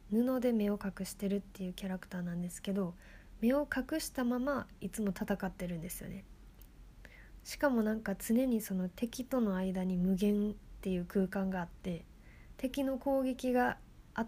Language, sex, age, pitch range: Japanese, female, 20-39, 190-245 Hz